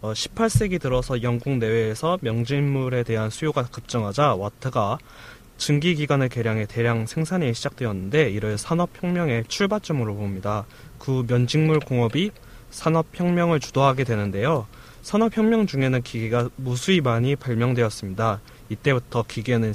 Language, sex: Korean, male